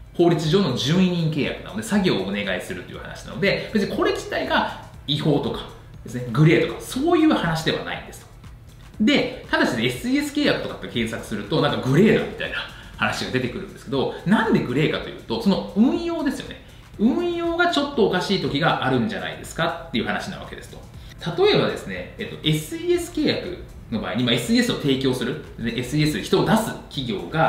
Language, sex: Japanese, male